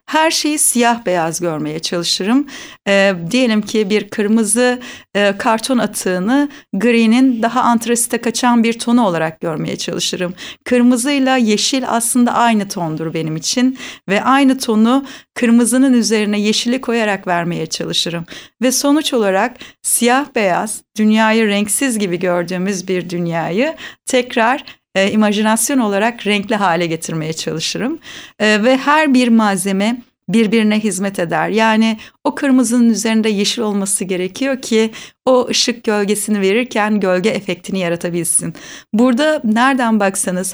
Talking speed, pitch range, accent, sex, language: 125 wpm, 195-245 Hz, native, female, Turkish